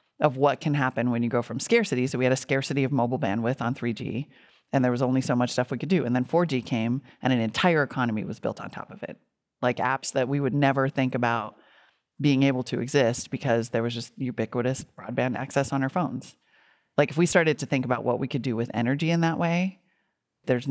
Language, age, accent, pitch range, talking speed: English, 30-49, American, 125-150 Hz, 240 wpm